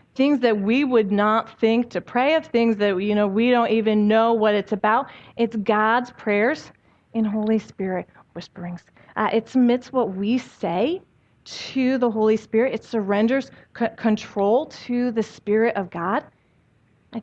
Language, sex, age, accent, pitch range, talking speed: English, female, 30-49, American, 210-260 Hz, 165 wpm